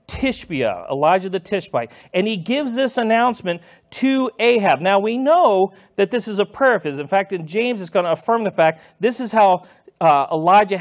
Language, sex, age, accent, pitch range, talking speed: English, male, 40-59, American, 160-210 Hz, 195 wpm